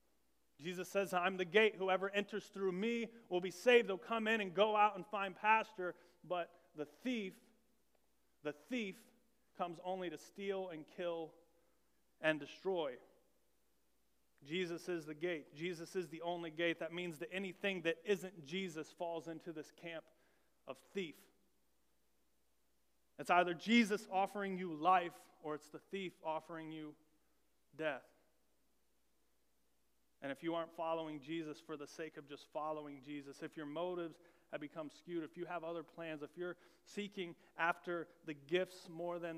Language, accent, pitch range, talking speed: English, American, 160-185 Hz, 155 wpm